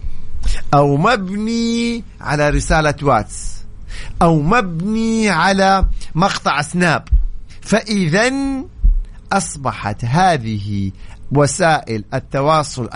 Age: 50-69